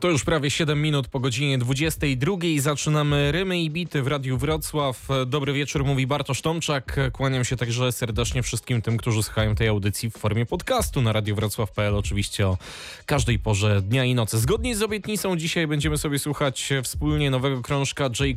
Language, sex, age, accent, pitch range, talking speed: English, male, 10-29, Polish, 115-140 Hz, 175 wpm